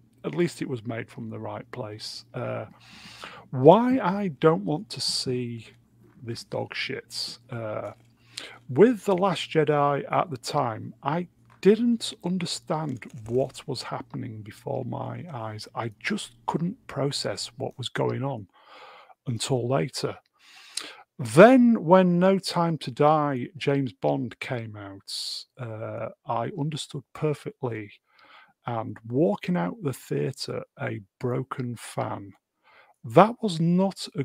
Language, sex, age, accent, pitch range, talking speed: English, male, 40-59, British, 120-175 Hz, 125 wpm